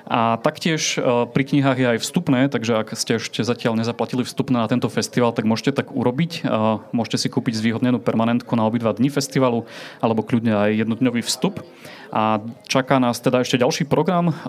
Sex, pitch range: male, 115-135 Hz